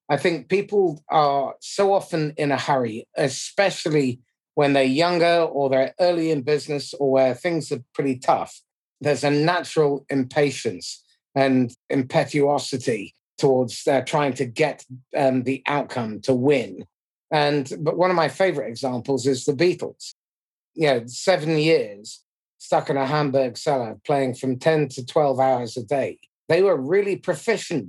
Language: English